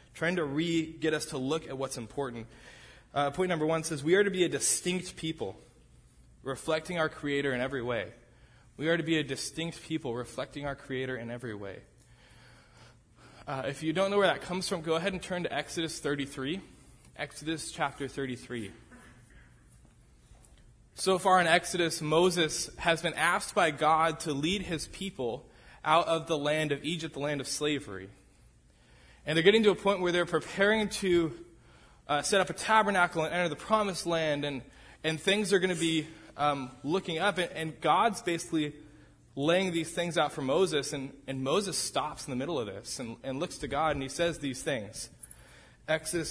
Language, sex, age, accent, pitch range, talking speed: English, male, 20-39, American, 135-175 Hz, 185 wpm